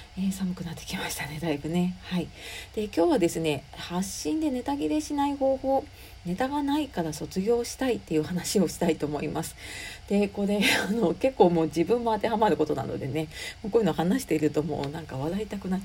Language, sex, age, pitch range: Japanese, female, 40-59, 155-235 Hz